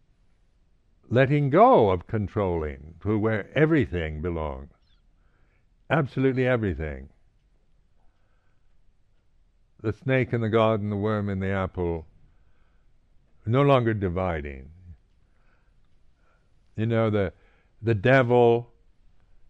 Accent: American